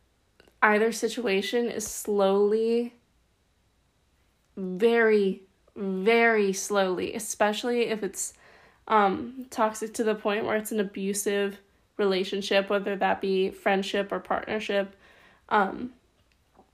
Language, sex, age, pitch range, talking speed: English, female, 20-39, 200-225 Hz, 95 wpm